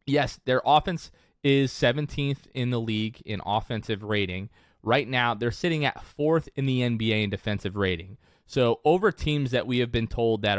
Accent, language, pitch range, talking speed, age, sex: American, English, 100-130 Hz, 180 wpm, 30-49, male